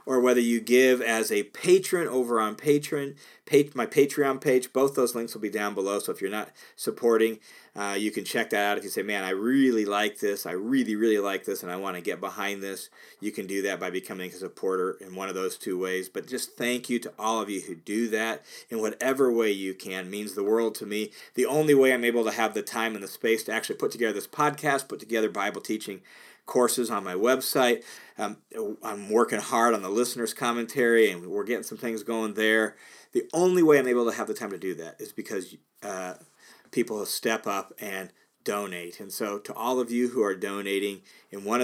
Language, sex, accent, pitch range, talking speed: English, male, American, 100-125 Hz, 230 wpm